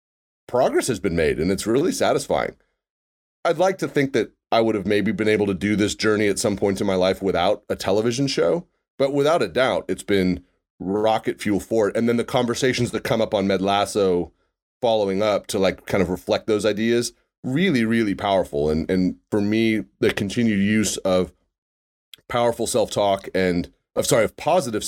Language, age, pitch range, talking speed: English, 30-49, 90-115 Hz, 195 wpm